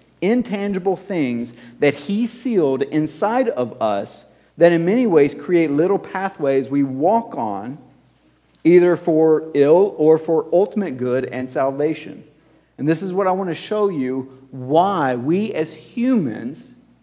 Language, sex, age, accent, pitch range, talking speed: English, male, 50-69, American, 125-190 Hz, 140 wpm